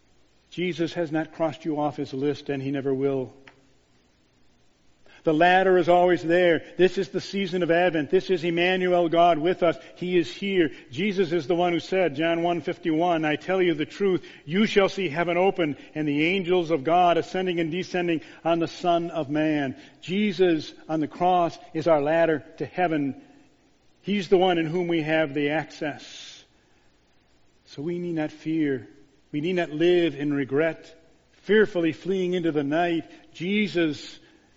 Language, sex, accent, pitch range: English, male, American, 145-175 Hz